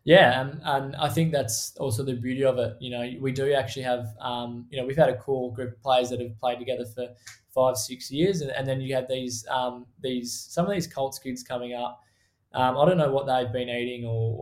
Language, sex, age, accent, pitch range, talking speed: English, male, 20-39, Australian, 120-135 Hz, 245 wpm